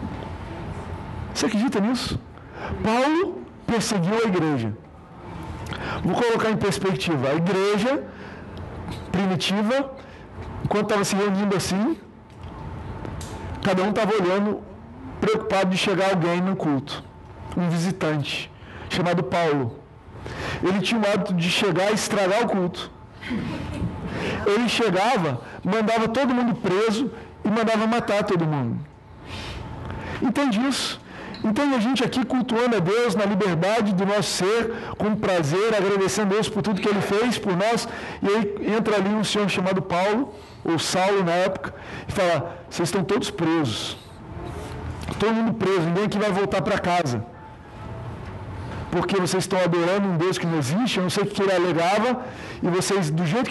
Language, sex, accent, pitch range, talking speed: Portuguese, male, Brazilian, 170-215 Hz, 140 wpm